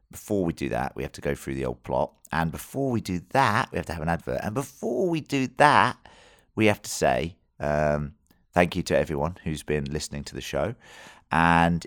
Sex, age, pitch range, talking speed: male, 30-49, 80-90 Hz, 220 wpm